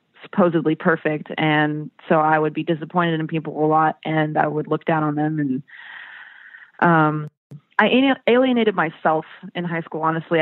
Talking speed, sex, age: 160 wpm, female, 20-39